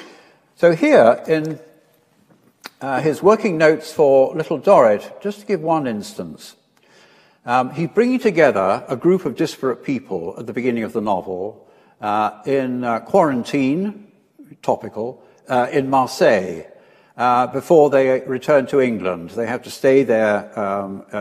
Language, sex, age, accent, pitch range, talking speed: English, male, 60-79, British, 120-165 Hz, 140 wpm